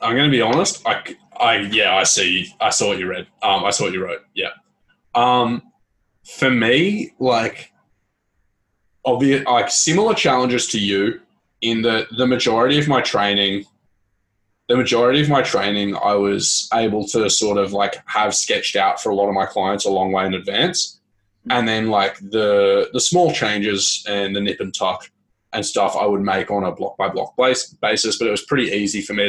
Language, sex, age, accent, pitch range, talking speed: English, male, 20-39, Australian, 100-120 Hz, 195 wpm